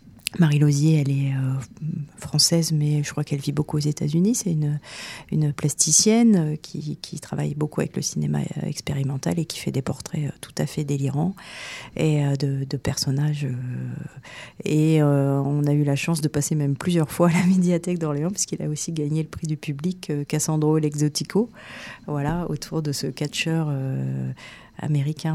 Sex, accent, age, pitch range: female, French, 40-59, 140-160 Hz